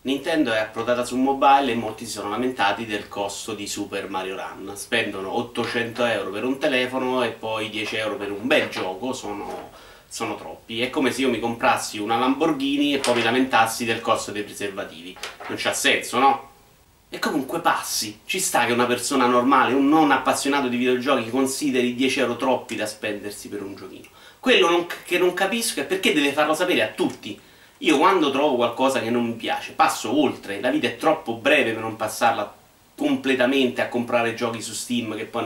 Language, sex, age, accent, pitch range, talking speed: Italian, male, 30-49, native, 115-160 Hz, 195 wpm